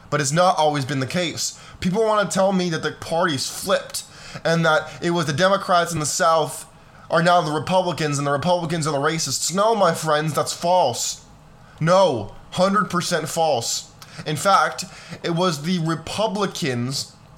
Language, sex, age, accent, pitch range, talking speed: English, male, 20-39, American, 150-180 Hz, 170 wpm